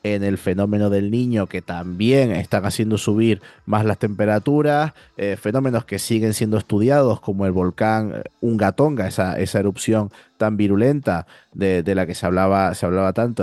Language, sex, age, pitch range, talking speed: Spanish, male, 30-49, 95-110 Hz, 160 wpm